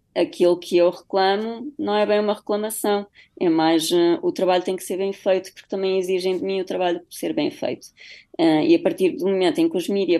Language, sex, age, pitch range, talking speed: Portuguese, female, 20-39, 175-230 Hz, 235 wpm